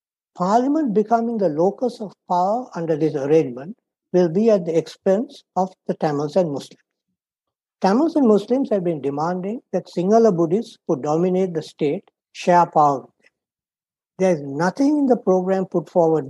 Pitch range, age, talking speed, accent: 165-220 Hz, 60-79, 160 wpm, Indian